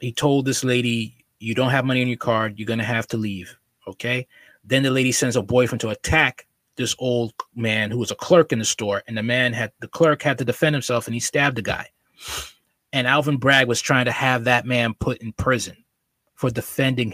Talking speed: 230 wpm